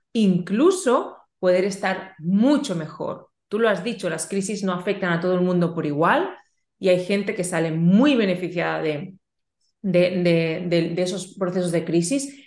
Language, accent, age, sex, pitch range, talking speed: Spanish, Spanish, 30-49, female, 185-250 Hz, 170 wpm